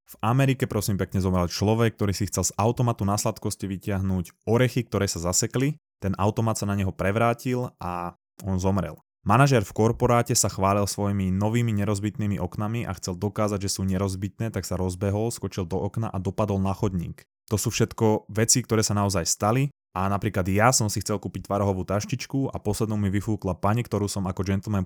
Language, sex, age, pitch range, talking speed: Slovak, male, 20-39, 95-115 Hz, 190 wpm